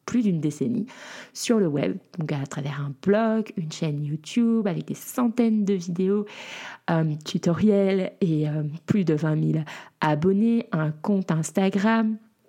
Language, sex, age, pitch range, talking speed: French, female, 30-49, 165-210 Hz, 150 wpm